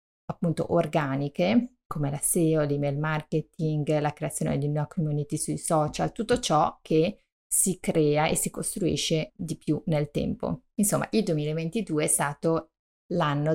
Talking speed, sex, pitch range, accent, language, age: 140 wpm, female, 150-180 Hz, native, Italian, 30-49